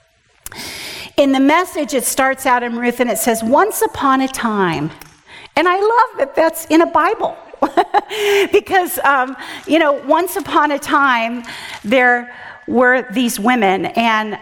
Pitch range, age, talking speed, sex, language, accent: 225-285 Hz, 40-59, 150 wpm, female, English, American